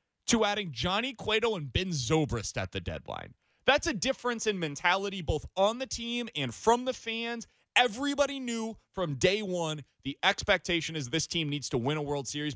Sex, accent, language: male, American, English